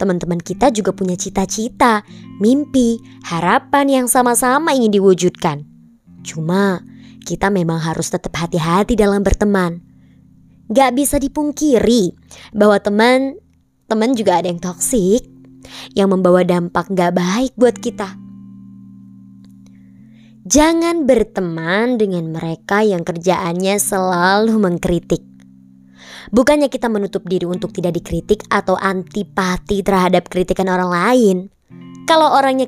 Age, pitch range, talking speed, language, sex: 20-39, 175-250 Hz, 105 wpm, Indonesian, male